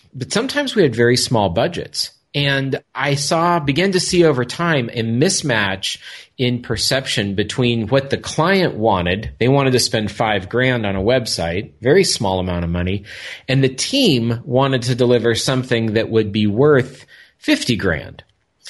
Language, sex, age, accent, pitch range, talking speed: English, male, 40-59, American, 105-130 Hz, 165 wpm